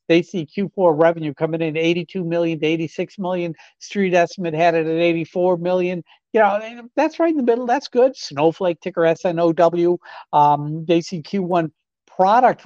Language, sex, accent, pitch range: English, male, American, 130-175 Hz